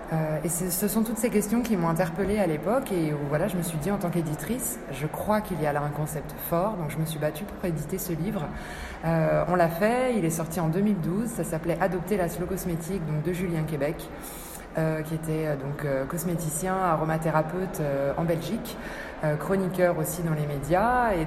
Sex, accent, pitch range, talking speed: female, French, 155-195 Hz, 210 wpm